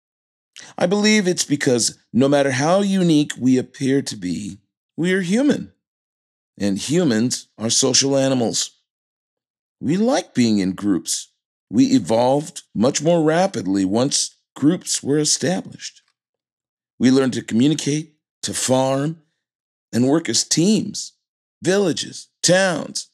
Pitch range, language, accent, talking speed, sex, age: 110-155 Hz, English, American, 120 wpm, male, 40-59